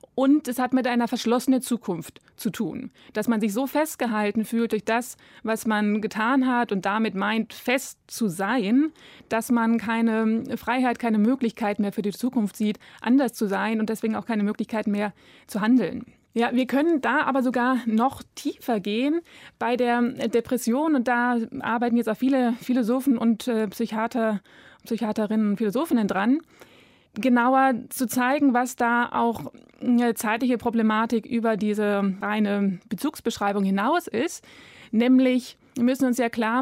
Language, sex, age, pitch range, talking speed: German, female, 20-39, 215-250 Hz, 155 wpm